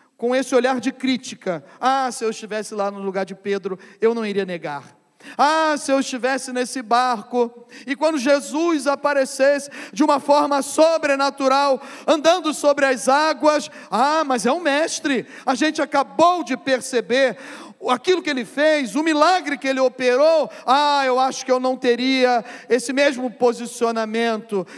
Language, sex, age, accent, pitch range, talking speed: Portuguese, male, 40-59, Brazilian, 250-290 Hz, 155 wpm